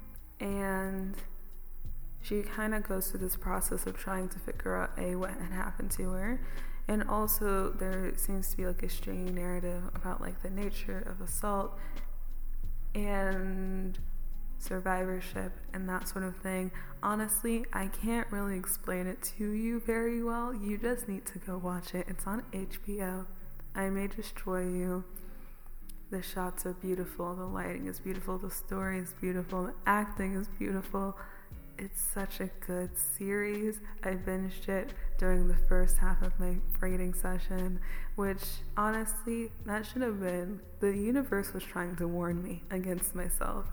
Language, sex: English, female